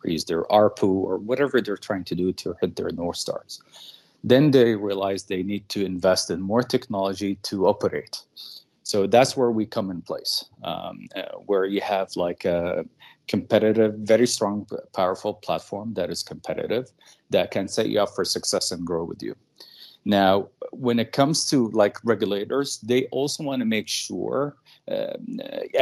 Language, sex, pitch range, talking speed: English, male, 95-120 Hz, 170 wpm